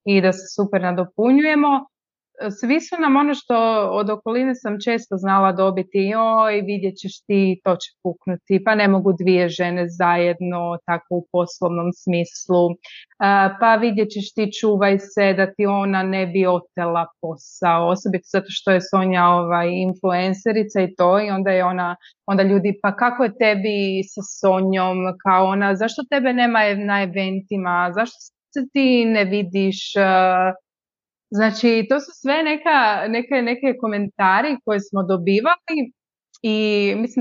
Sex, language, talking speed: female, Croatian, 150 wpm